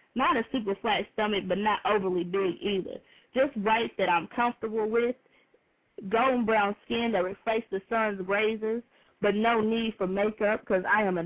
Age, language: 20-39, English